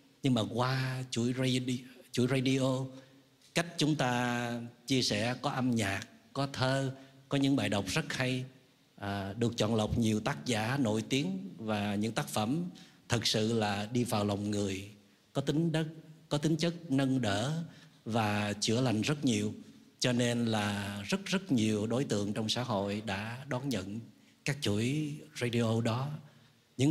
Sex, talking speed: male, 160 wpm